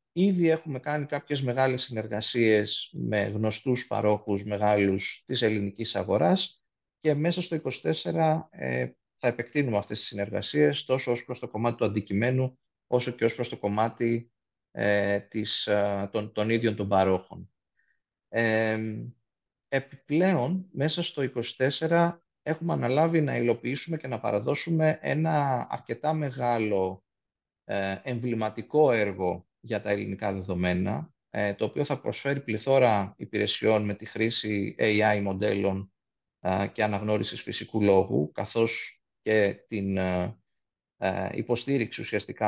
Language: Greek